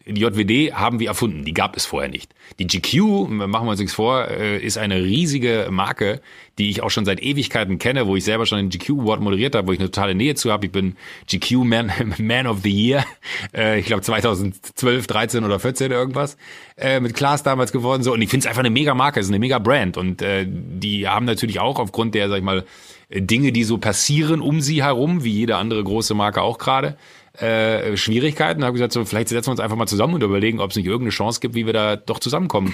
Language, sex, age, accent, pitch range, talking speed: German, male, 30-49, German, 105-130 Hz, 225 wpm